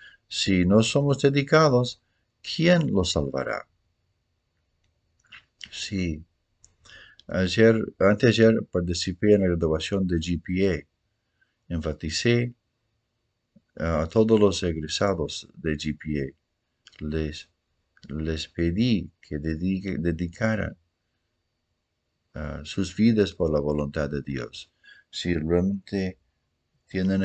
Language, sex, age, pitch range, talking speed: English, male, 50-69, 80-105 Hz, 95 wpm